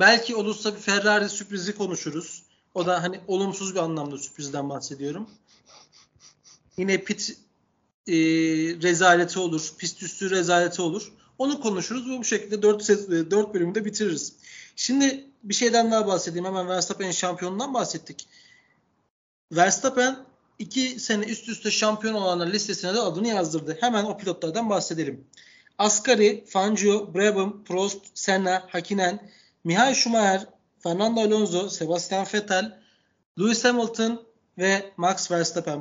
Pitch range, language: 180-215 Hz, Turkish